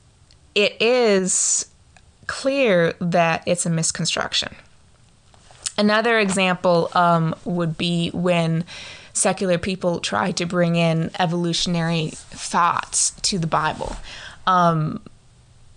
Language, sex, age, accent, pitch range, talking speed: English, female, 20-39, American, 170-195 Hz, 95 wpm